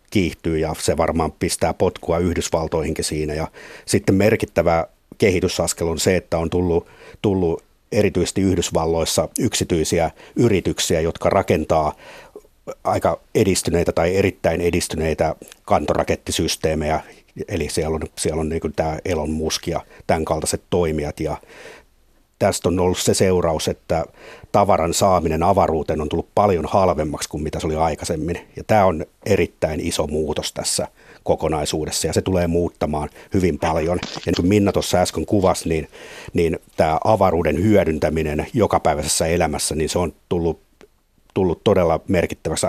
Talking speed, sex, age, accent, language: 130 wpm, male, 50-69, native, Finnish